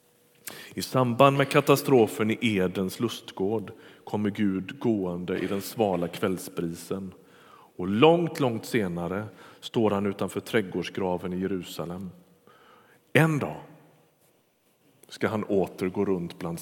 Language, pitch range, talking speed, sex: Swedish, 95-125 Hz, 110 wpm, male